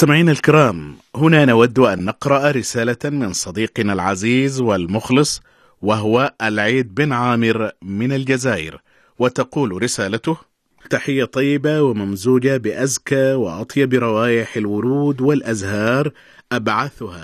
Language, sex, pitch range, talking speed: Arabic, male, 110-135 Hz, 95 wpm